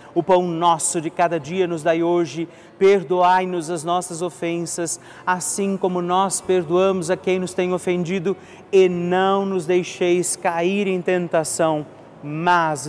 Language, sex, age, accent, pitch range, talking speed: Portuguese, male, 40-59, Brazilian, 160-185 Hz, 140 wpm